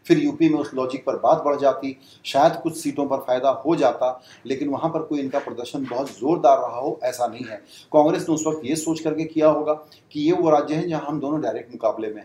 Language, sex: English, male